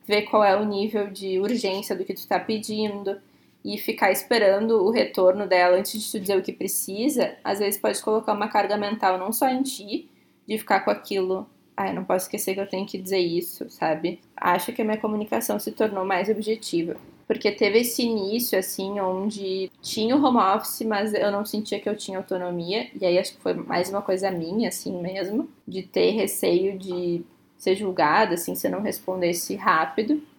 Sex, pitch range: female, 190-235 Hz